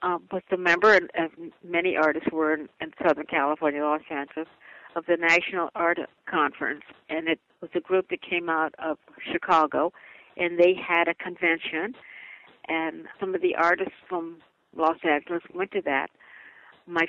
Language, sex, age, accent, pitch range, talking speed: English, female, 60-79, American, 160-185 Hz, 160 wpm